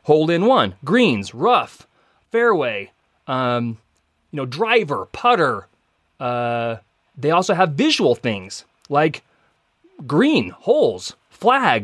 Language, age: English, 30-49